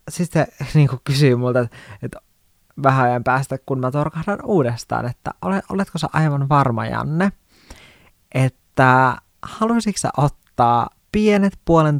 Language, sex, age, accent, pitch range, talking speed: Finnish, male, 20-39, native, 115-140 Hz, 130 wpm